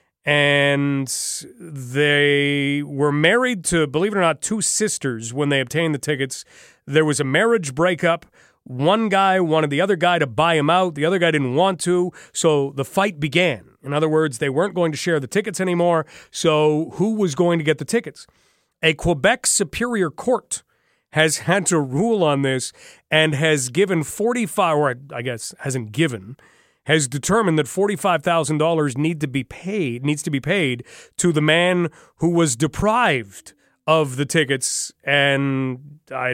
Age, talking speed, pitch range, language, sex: 30-49, 170 wpm, 145-190 Hz, English, male